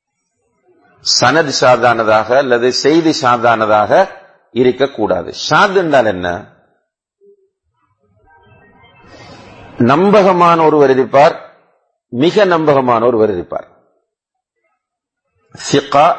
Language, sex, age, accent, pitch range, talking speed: English, male, 50-69, Indian, 120-180 Hz, 70 wpm